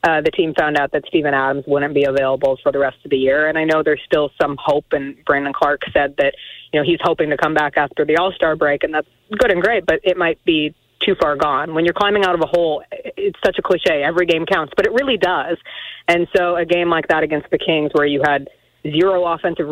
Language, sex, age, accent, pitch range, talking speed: English, female, 30-49, American, 150-180 Hz, 255 wpm